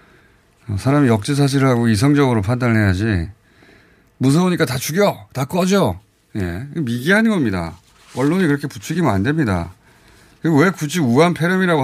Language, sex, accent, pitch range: Korean, male, native, 105-155 Hz